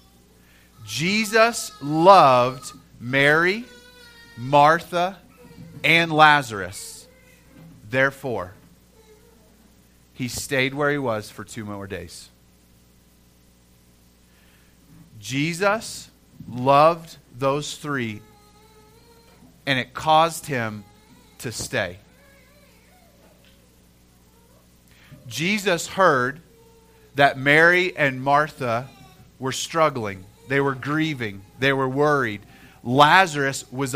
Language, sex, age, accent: English, male, 30-49, American